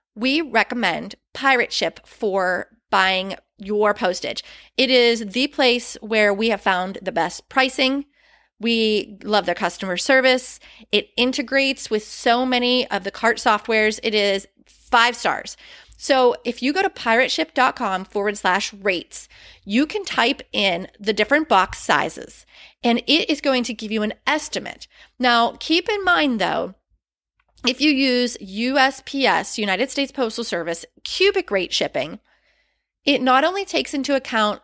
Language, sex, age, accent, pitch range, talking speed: English, female, 30-49, American, 210-270 Hz, 145 wpm